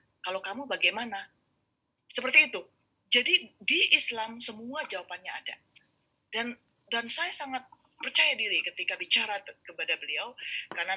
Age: 30-49